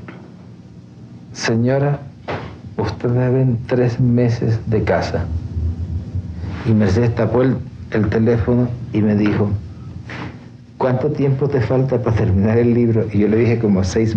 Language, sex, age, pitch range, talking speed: Spanish, male, 60-79, 105-125 Hz, 125 wpm